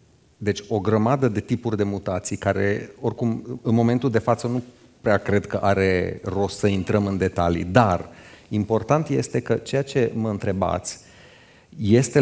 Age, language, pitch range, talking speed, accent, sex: 30-49, Romanian, 100-125 Hz, 155 wpm, native, male